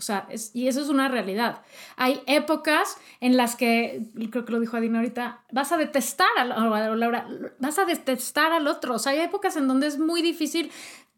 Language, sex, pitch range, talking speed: Spanish, female, 235-300 Hz, 205 wpm